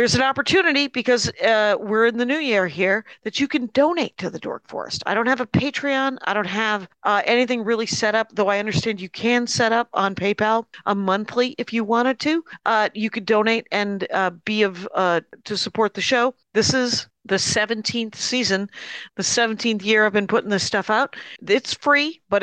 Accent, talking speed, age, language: American, 205 wpm, 50-69, English